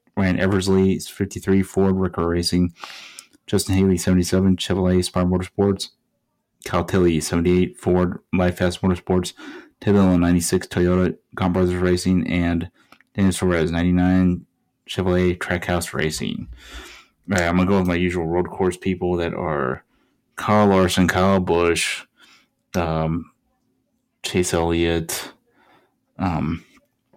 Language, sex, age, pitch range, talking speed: English, male, 20-39, 85-95 Hz, 115 wpm